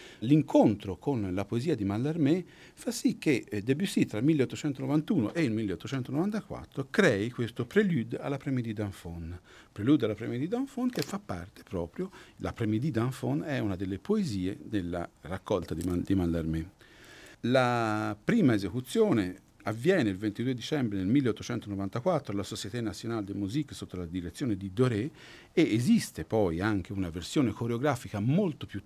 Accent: native